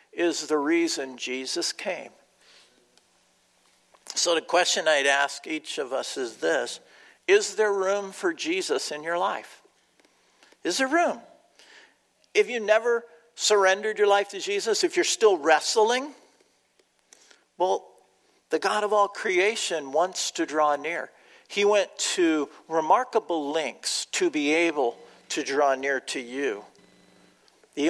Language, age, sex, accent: English, 50-69, male, American